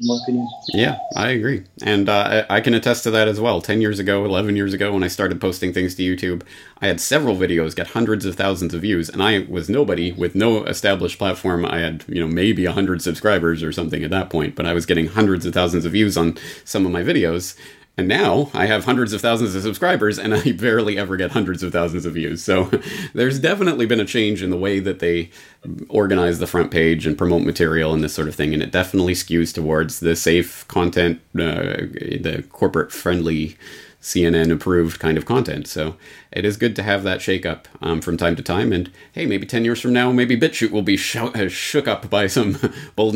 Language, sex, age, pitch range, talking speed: English, male, 30-49, 85-110 Hz, 220 wpm